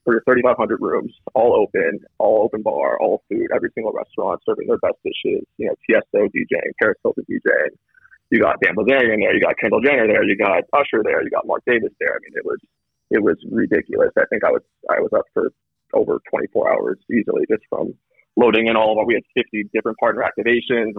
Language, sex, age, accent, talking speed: English, male, 20-39, American, 210 wpm